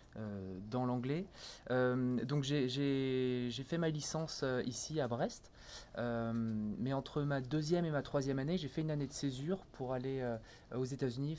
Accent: French